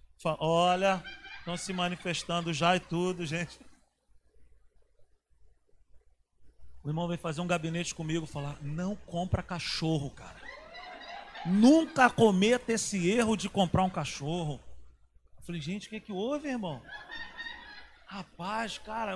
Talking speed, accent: 120 wpm, Brazilian